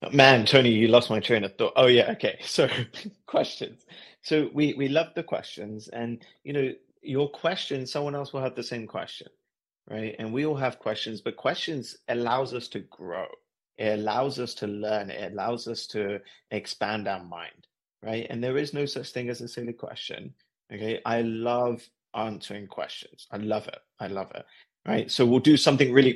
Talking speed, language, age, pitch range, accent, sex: 190 wpm, English, 30-49, 110-130 Hz, British, male